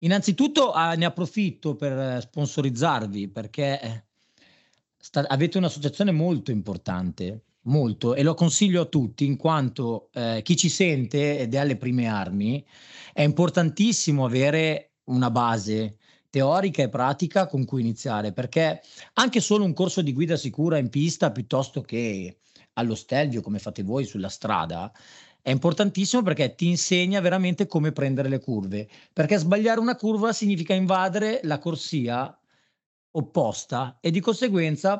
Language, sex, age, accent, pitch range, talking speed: Italian, male, 30-49, native, 125-175 Hz, 135 wpm